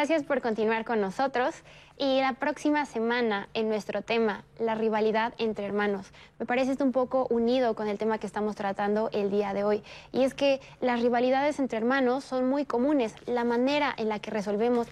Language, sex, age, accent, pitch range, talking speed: Spanish, female, 20-39, Mexican, 210-250 Hz, 195 wpm